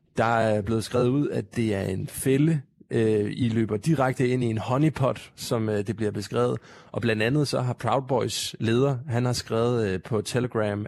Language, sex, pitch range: Danish, male, 110-130 Hz